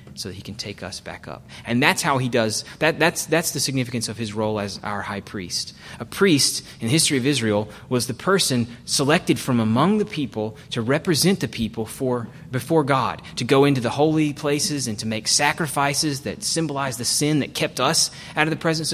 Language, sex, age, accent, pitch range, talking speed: English, male, 30-49, American, 110-150 Hz, 215 wpm